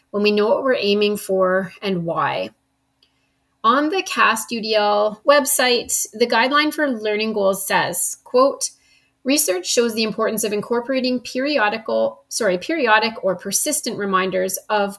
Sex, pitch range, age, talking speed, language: female, 195-250 Hz, 30-49, 135 wpm, English